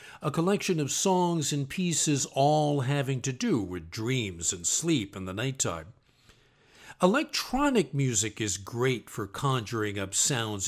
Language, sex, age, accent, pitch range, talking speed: English, male, 50-69, American, 125-170 Hz, 140 wpm